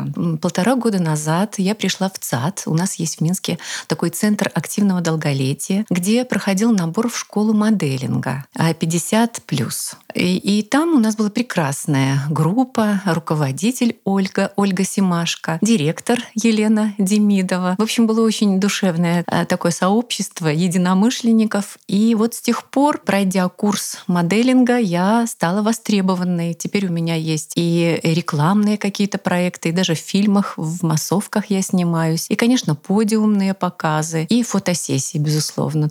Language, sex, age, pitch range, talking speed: Russian, female, 30-49, 165-210 Hz, 135 wpm